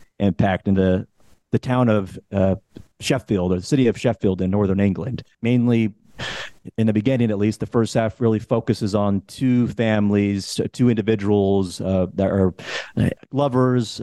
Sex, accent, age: male, American, 30-49